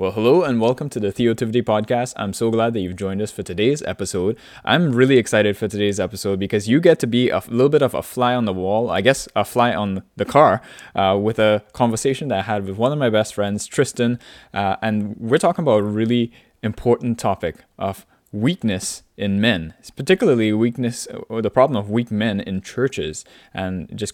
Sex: male